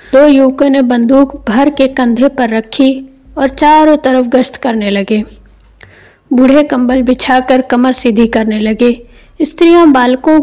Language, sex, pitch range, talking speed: Hindi, female, 230-285 Hz, 140 wpm